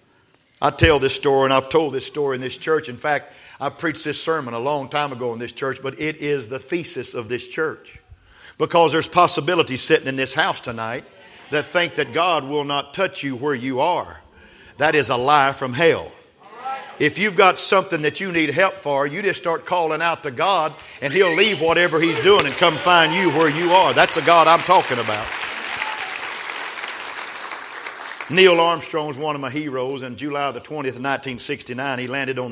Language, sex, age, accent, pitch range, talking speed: English, male, 50-69, American, 130-165 Hz, 200 wpm